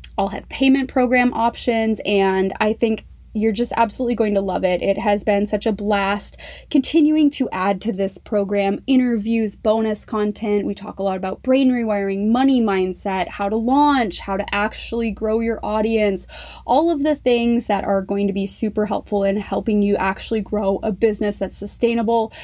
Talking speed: 180 wpm